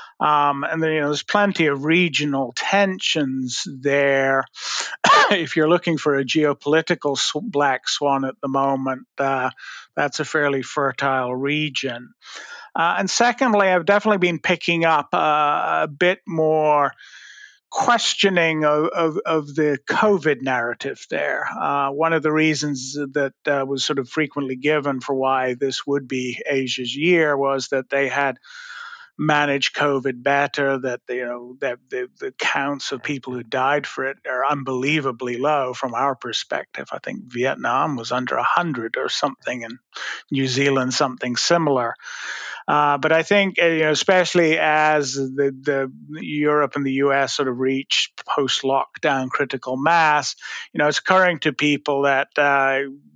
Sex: male